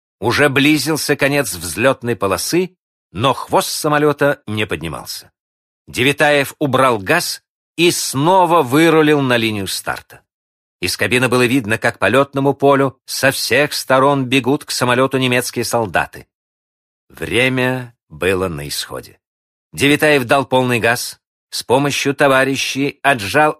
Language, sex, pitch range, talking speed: Russian, male, 110-145 Hz, 115 wpm